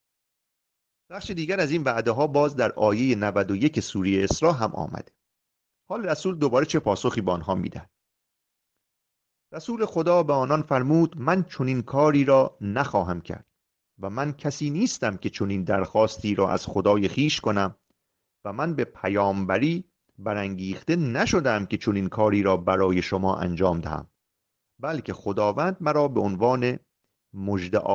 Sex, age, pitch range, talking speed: male, 40-59, 100-150 Hz, 140 wpm